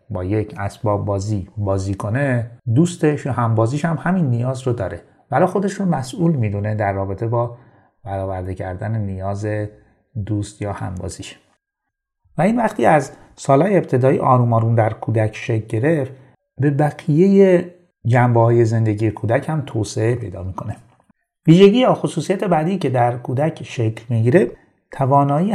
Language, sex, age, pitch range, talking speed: Persian, male, 30-49, 110-145 Hz, 135 wpm